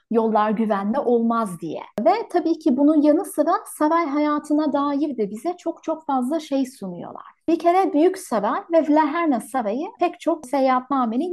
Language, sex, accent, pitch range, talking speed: Turkish, female, native, 240-310 Hz, 160 wpm